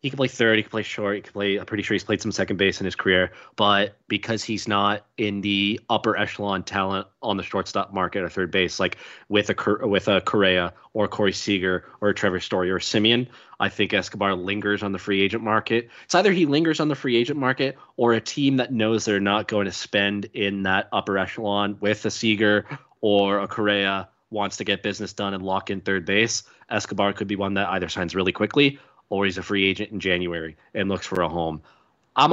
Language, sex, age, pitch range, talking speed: English, male, 20-39, 95-105 Hz, 230 wpm